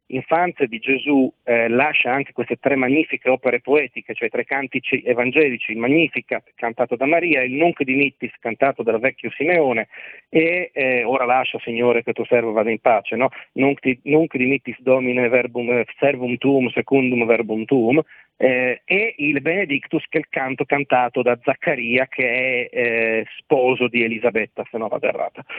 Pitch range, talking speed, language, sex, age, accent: 125-150 Hz, 165 wpm, Italian, male, 40-59, native